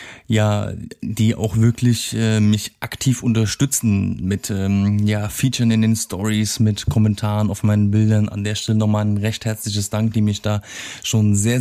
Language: German